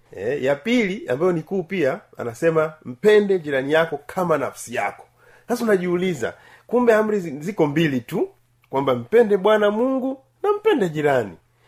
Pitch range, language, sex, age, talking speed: 130-190 Hz, Swahili, male, 40-59, 145 wpm